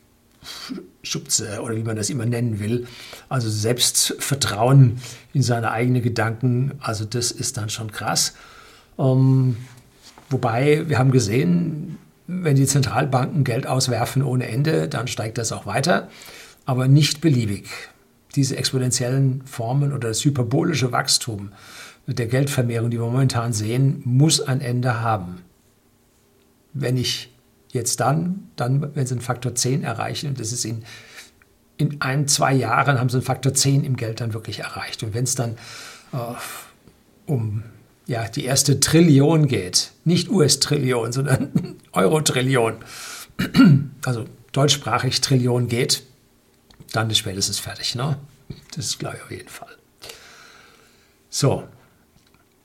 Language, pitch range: German, 115-140 Hz